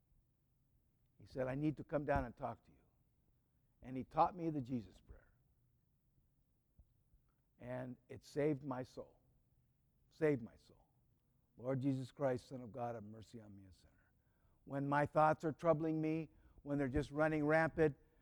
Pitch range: 125-155 Hz